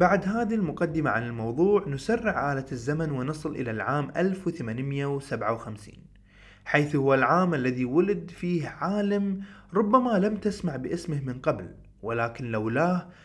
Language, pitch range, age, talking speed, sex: Arabic, 120-180 Hz, 20-39, 120 wpm, male